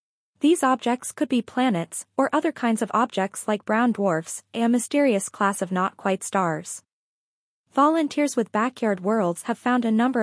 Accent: American